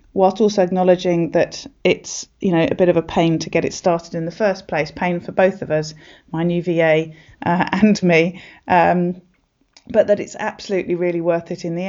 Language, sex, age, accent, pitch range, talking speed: English, female, 30-49, British, 170-200 Hz, 205 wpm